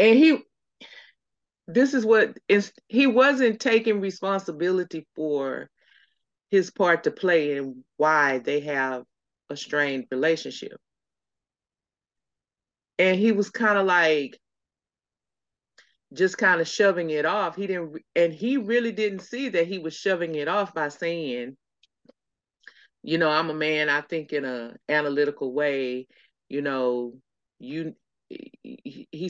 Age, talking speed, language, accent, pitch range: 30-49, 130 wpm, English, American, 145-205 Hz